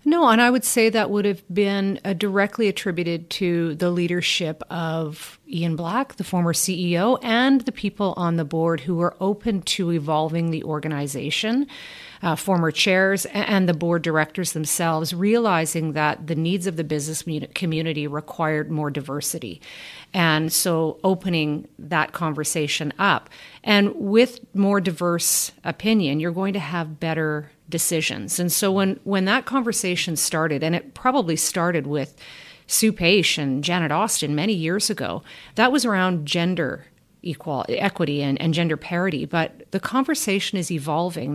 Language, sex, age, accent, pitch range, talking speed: English, female, 40-59, American, 160-200 Hz, 150 wpm